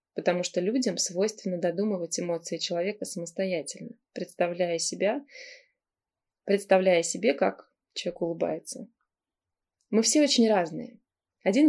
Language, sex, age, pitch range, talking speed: Russian, female, 20-39, 175-225 Hz, 105 wpm